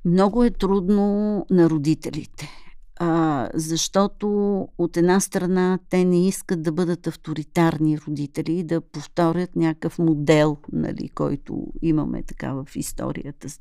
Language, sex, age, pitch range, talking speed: Bulgarian, female, 50-69, 160-195 Hz, 110 wpm